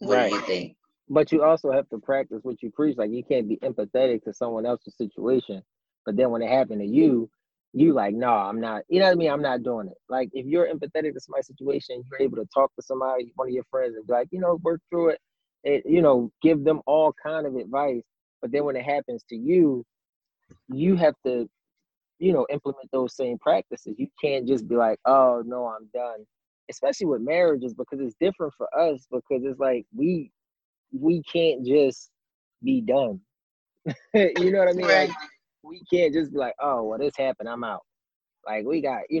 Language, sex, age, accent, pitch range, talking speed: English, male, 20-39, American, 125-165 Hz, 210 wpm